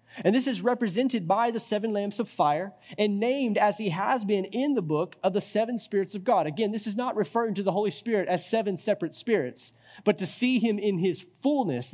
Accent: American